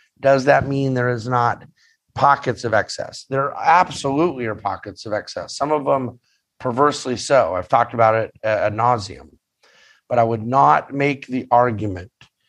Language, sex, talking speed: English, male, 160 wpm